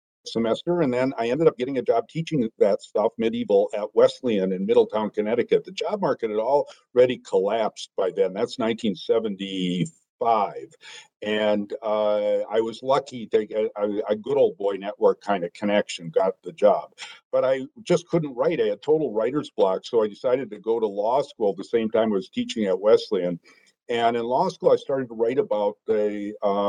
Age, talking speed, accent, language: 50-69, 190 wpm, American, English